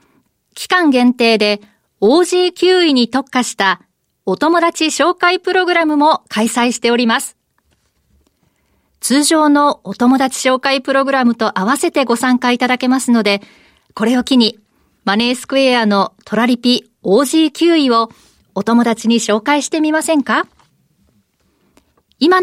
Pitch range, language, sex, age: 220-300 Hz, Japanese, female, 40-59